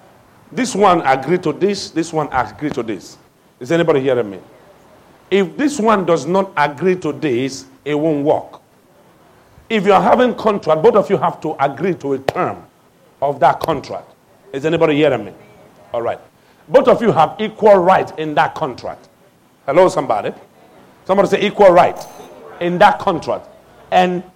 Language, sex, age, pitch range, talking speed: English, male, 50-69, 155-210 Hz, 165 wpm